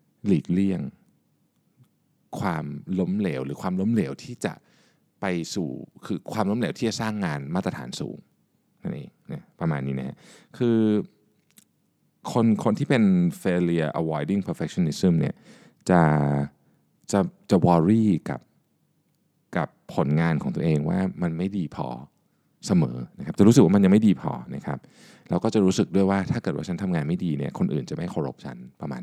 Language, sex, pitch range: Thai, male, 80-110 Hz